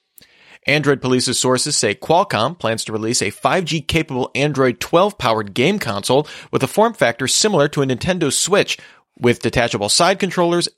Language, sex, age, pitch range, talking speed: English, male, 30-49, 120-160 Hz, 150 wpm